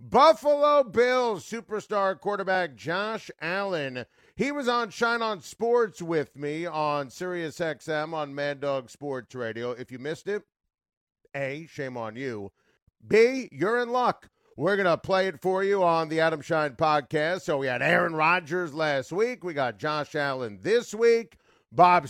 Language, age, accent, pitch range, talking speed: English, 40-59, American, 130-180 Hz, 160 wpm